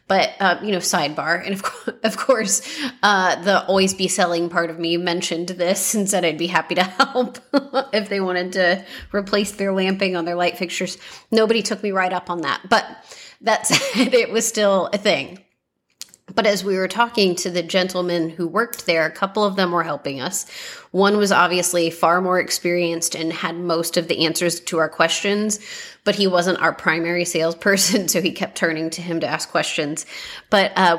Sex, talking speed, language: female, 200 wpm, English